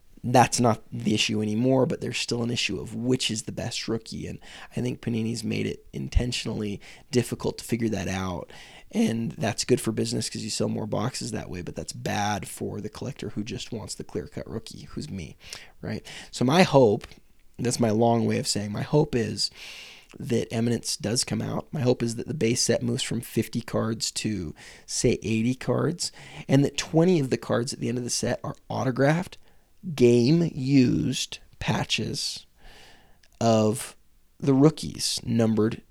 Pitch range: 110-130 Hz